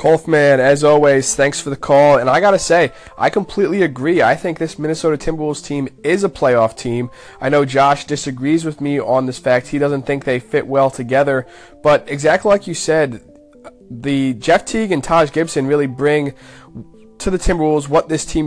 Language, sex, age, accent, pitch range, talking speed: English, male, 20-39, American, 125-150 Hz, 190 wpm